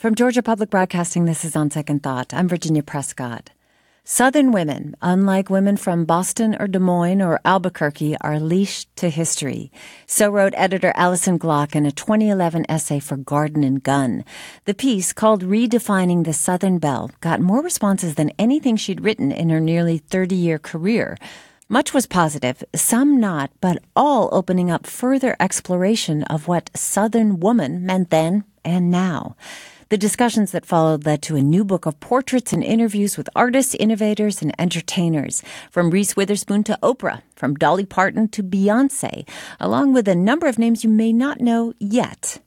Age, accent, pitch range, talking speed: 40-59, American, 160-215 Hz, 165 wpm